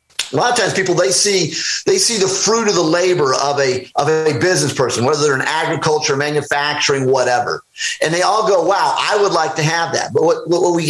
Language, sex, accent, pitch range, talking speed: English, male, American, 150-205 Hz, 225 wpm